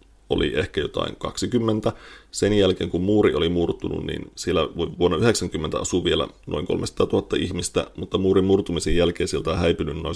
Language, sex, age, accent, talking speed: Finnish, male, 30-49, native, 165 wpm